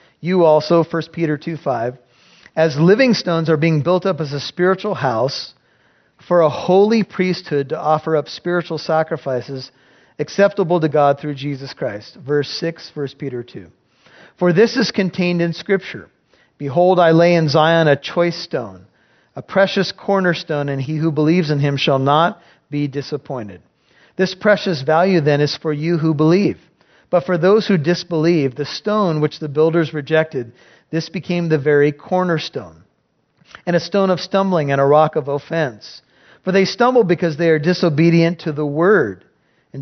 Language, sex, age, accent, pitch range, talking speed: English, male, 40-59, American, 145-180 Hz, 165 wpm